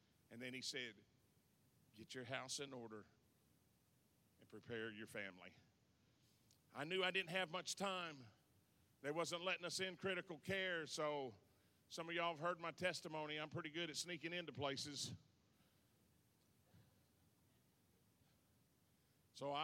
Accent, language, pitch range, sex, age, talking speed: American, English, 135-175 Hz, male, 40-59, 130 wpm